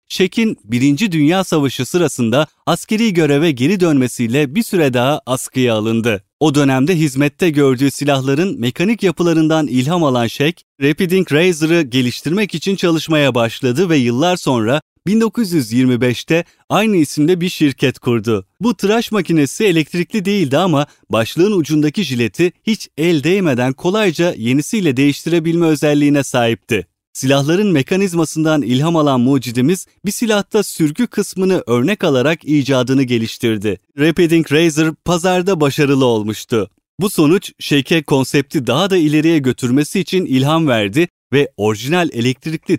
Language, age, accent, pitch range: Turkish, 30-49, native, 130-180 Hz